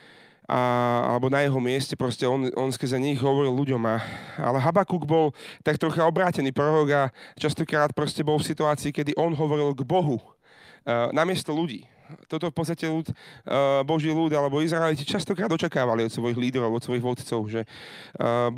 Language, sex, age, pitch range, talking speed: Slovak, male, 30-49, 140-170 Hz, 170 wpm